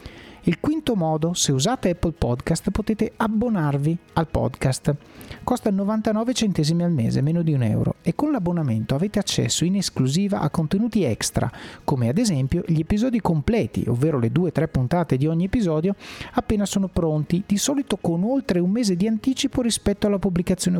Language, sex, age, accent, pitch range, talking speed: Italian, male, 30-49, native, 150-210 Hz, 170 wpm